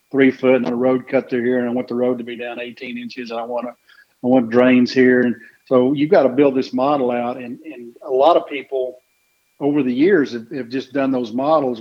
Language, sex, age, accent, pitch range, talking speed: English, male, 50-69, American, 120-140 Hz, 255 wpm